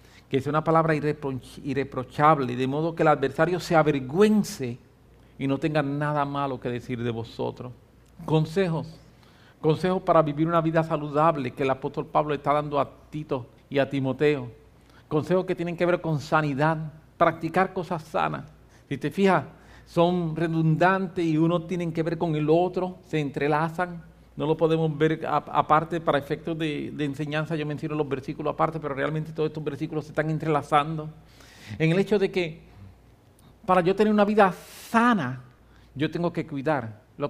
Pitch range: 130-160 Hz